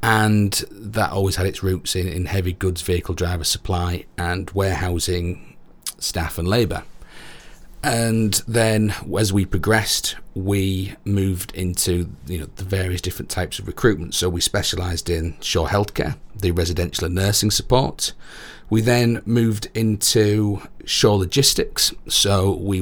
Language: English